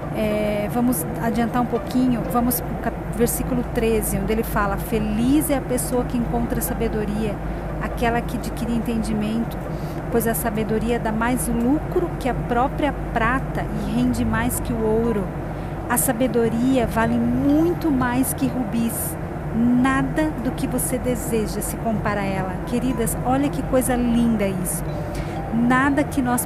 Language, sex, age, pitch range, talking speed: Portuguese, female, 40-59, 200-245 Hz, 145 wpm